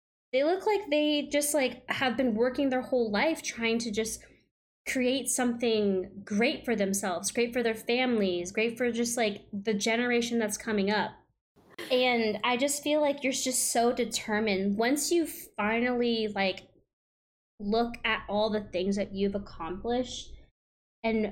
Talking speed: 155 wpm